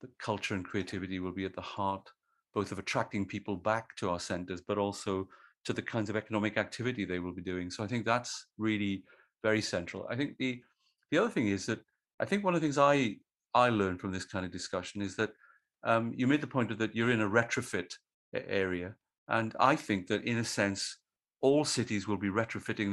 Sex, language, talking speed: male, English, 215 wpm